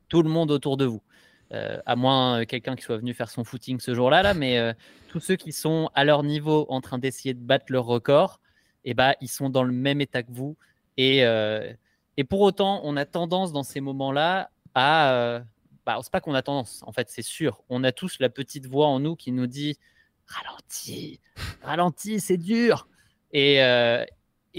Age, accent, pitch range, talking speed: 20-39, French, 130-155 Hz, 210 wpm